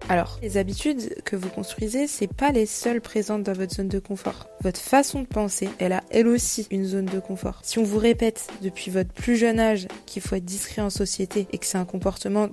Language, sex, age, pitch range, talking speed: French, female, 20-39, 190-225 Hz, 230 wpm